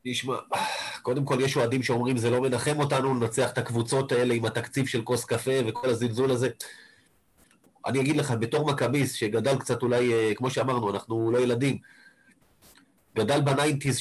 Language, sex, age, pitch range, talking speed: Hebrew, male, 30-49, 120-150 Hz, 155 wpm